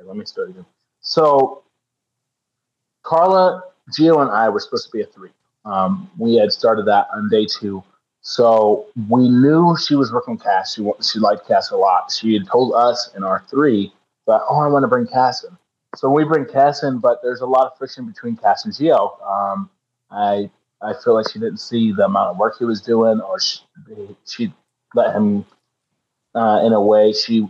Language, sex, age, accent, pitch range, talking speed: English, male, 30-49, American, 110-145 Hz, 200 wpm